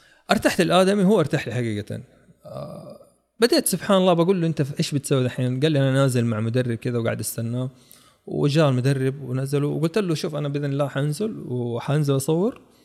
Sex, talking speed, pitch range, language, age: male, 175 wpm, 120-160 Hz, Arabic, 20-39